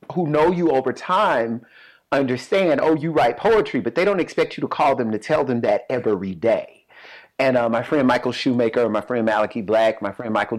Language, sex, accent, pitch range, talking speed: English, male, American, 115-155 Hz, 210 wpm